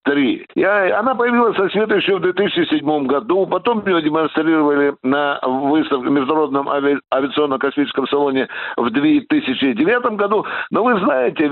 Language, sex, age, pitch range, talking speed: Russian, male, 60-79, 150-210 Hz, 130 wpm